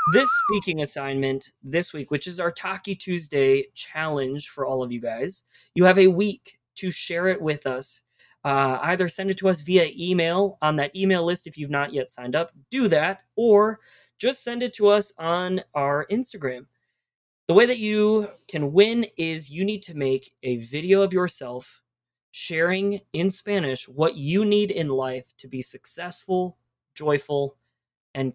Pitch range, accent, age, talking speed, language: 135-185 Hz, American, 20-39, 175 wpm, English